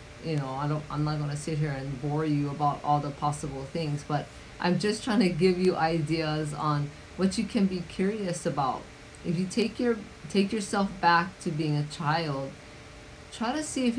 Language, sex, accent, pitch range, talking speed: English, female, American, 150-185 Hz, 200 wpm